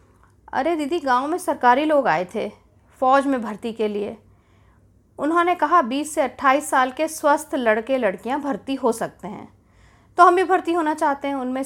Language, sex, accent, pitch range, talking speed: Hindi, female, native, 190-320 Hz, 180 wpm